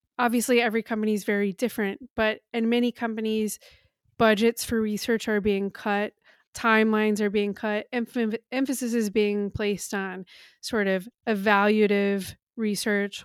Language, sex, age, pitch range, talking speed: English, female, 20-39, 200-230 Hz, 135 wpm